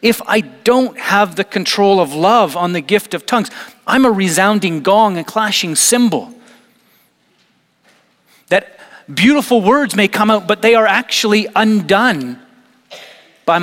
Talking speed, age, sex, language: 140 wpm, 40-59, male, English